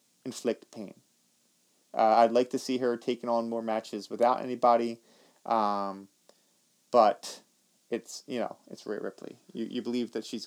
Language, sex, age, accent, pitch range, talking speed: English, male, 30-49, American, 110-135 Hz, 155 wpm